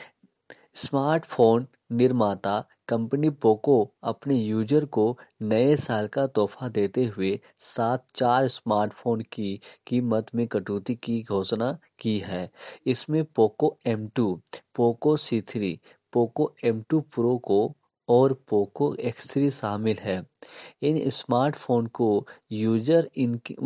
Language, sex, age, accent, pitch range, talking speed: Hindi, male, 20-39, native, 110-140 Hz, 110 wpm